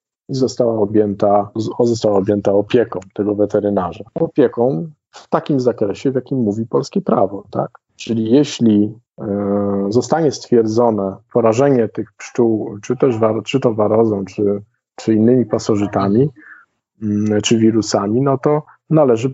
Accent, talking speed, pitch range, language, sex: native, 130 wpm, 110-125 Hz, Polish, male